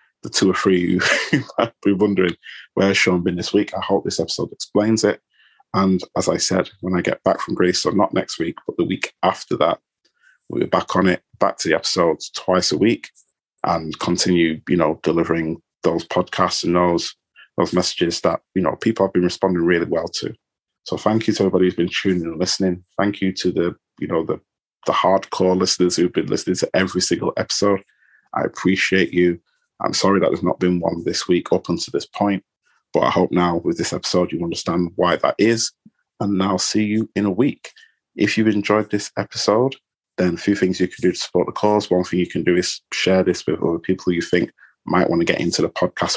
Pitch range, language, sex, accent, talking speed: 90-100 Hz, English, male, British, 220 wpm